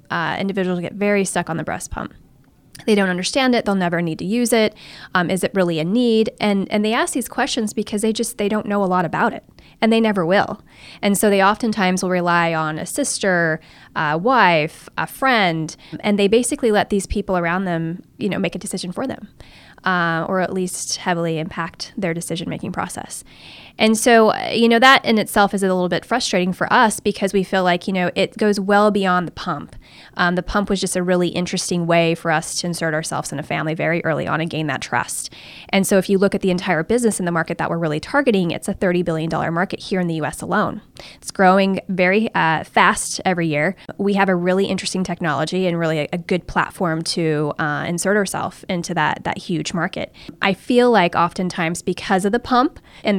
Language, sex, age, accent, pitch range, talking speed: English, female, 10-29, American, 170-205 Hz, 220 wpm